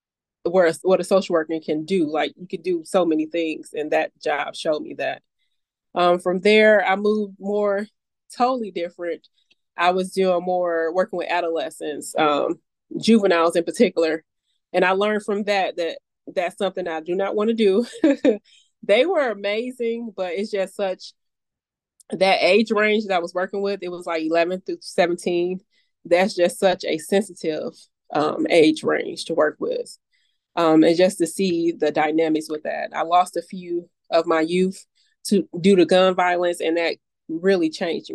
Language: English